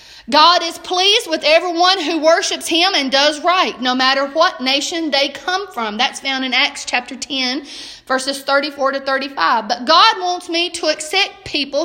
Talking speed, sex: 175 wpm, female